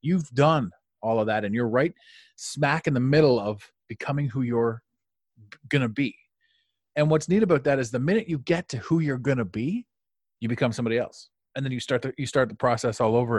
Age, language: 30-49, English